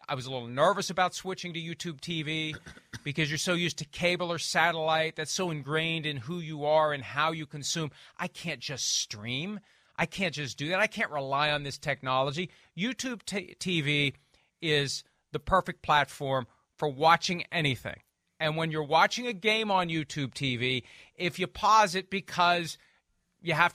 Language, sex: English, male